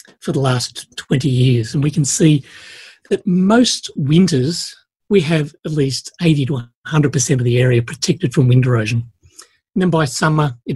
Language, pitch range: English, 125-170 Hz